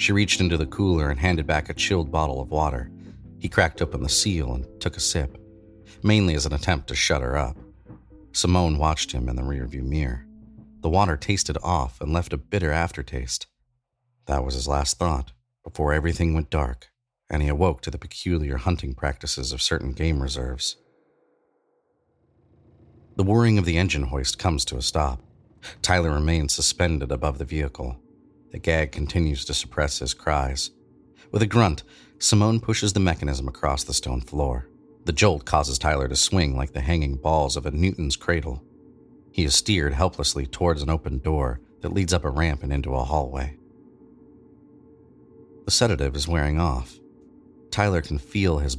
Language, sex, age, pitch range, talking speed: English, male, 40-59, 70-90 Hz, 175 wpm